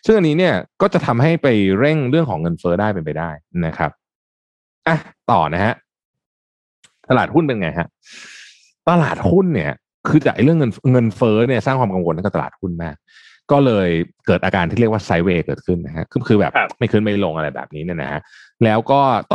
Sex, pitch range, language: male, 85-125 Hz, Thai